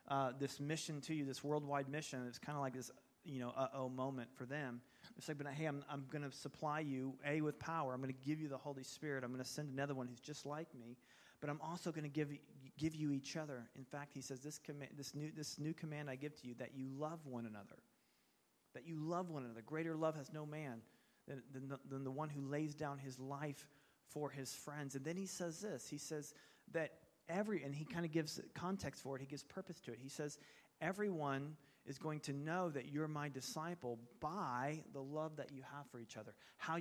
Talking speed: 240 wpm